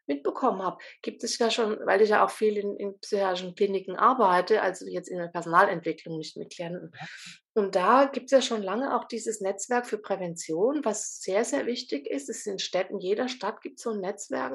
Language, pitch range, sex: German, 200-230 Hz, female